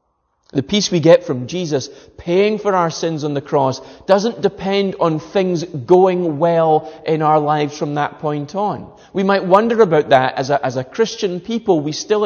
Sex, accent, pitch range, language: male, British, 145-195 Hz, English